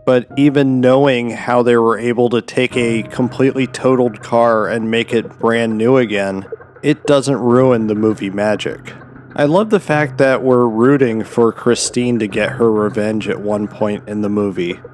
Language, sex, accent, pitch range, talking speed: English, male, American, 110-130 Hz, 175 wpm